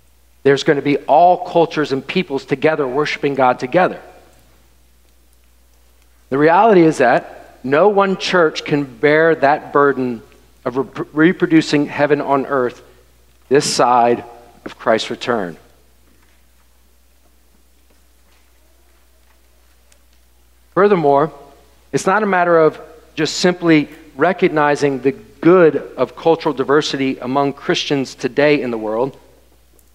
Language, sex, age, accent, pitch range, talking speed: English, male, 40-59, American, 95-160 Hz, 105 wpm